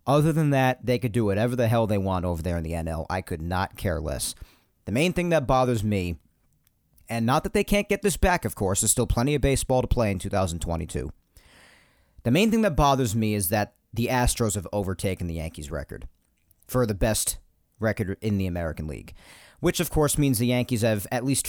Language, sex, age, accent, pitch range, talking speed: English, male, 40-59, American, 95-140 Hz, 220 wpm